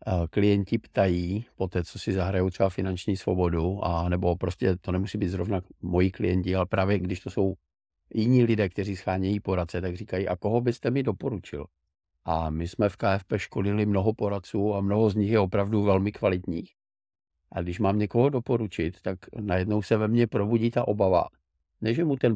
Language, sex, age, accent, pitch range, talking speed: Czech, male, 50-69, native, 85-105 Hz, 185 wpm